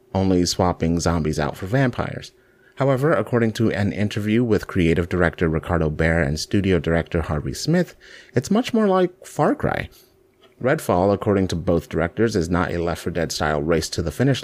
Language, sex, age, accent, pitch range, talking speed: English, male, 30-49, American, 85-115 Hz, 175 wpm